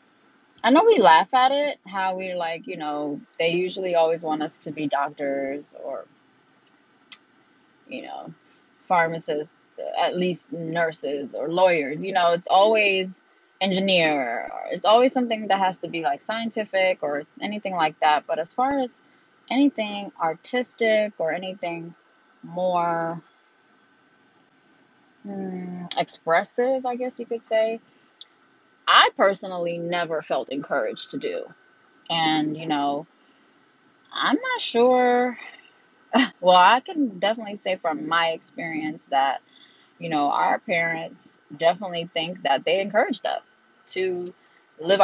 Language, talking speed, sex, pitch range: Amharic, 130 wpm, female, 165-235 Hz